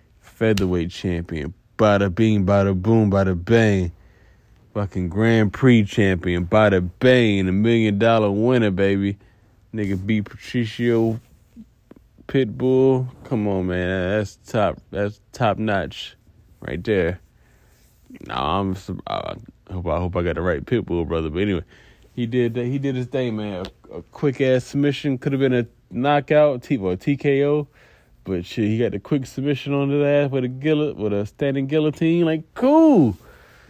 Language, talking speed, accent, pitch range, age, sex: English, 165 wpm, American, 105-155 Hz, 20-39, male